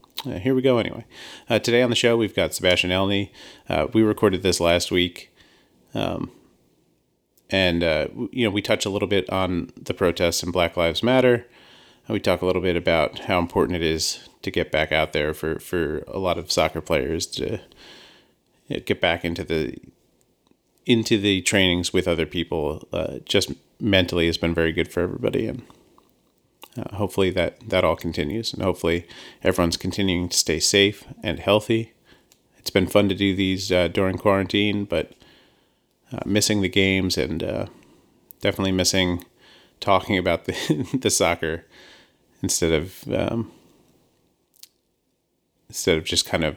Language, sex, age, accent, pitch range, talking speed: English, male, 30-49, American, 85-105 Hz, 160 wpm